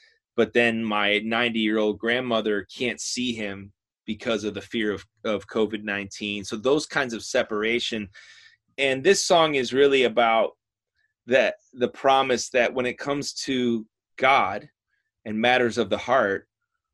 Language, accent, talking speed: English, American, 140 wpm